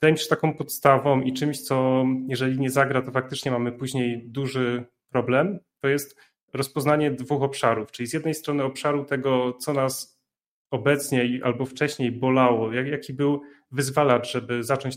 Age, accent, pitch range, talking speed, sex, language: 30-49, native, 125-150 Hz, 150 wpm, male, Polish